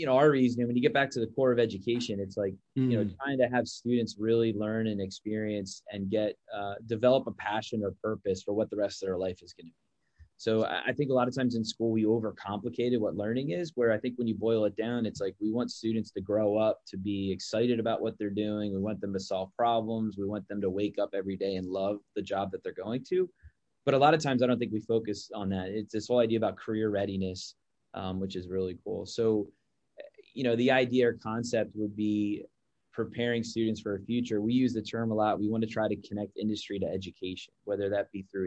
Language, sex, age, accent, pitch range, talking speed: English, male, 20-39, American, 100-120 Hz, 250 wpm